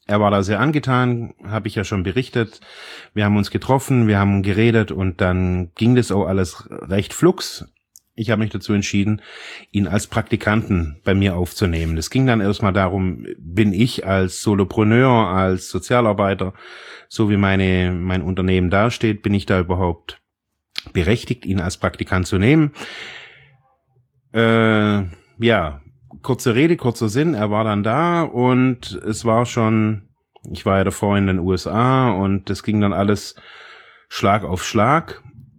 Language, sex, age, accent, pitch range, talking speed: German, male, 30-49, German, 95-115 Hz, 155 wpm